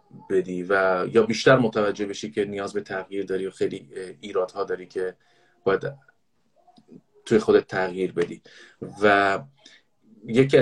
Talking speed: 135 wpm